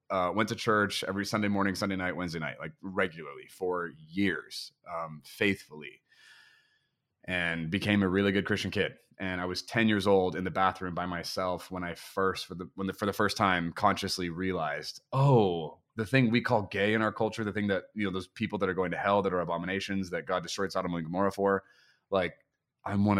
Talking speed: 205 wpm